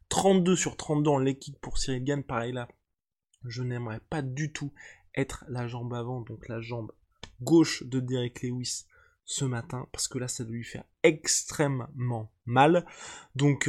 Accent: French